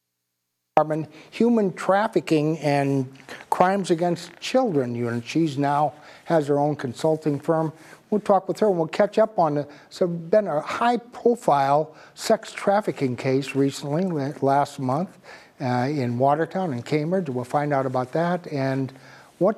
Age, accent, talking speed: 60-79, American, 145 wpm